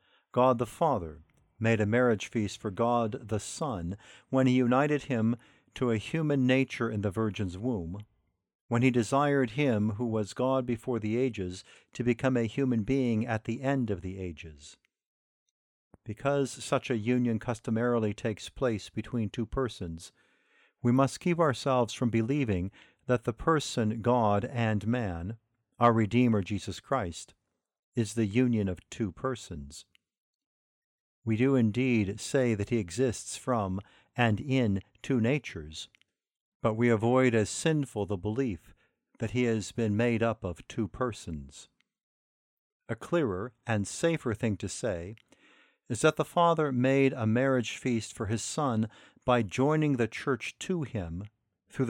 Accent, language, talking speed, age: American, English, 150 wpm, 50-69